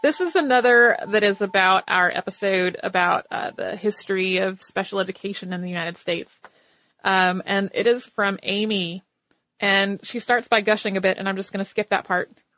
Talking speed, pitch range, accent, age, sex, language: 190 wpm, 190-230 Hz, American, 30-49, female, English